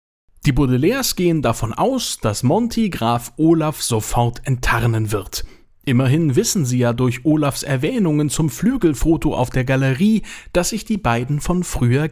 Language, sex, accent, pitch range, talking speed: German, male, German, 120-160 Hz, 150 wpm